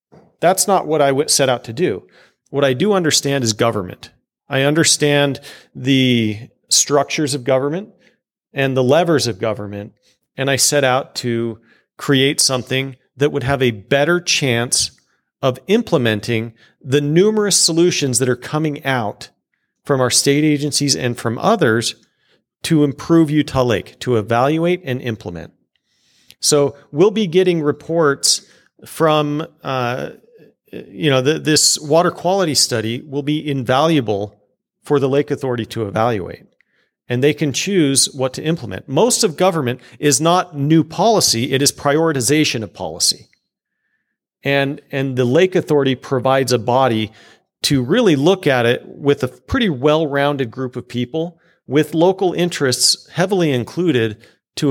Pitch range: 125-160 Hz